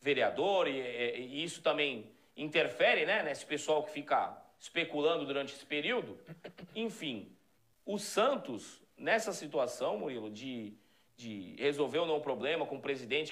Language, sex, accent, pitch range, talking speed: Portuguese, male, Brazilian, 155-235 Hz, 145 wpm